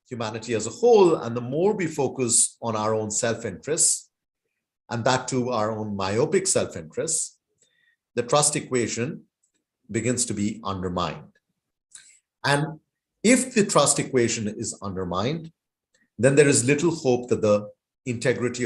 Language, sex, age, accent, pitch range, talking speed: English, male, 50-69, Indian, 115-155 Hz, 140 wpm